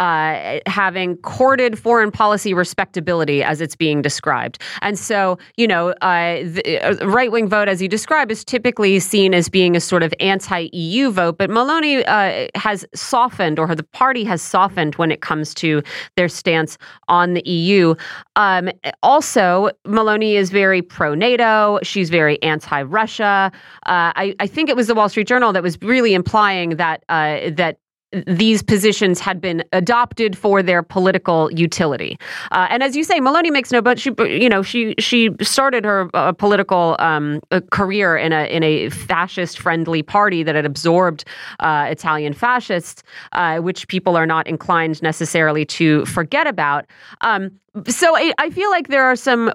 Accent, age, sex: American, 30-49, female